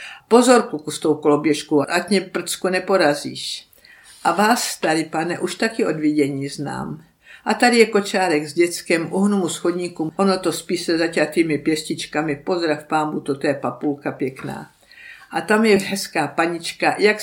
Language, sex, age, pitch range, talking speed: Czech, female, 60-79, 150-195 Hz, 145 wpm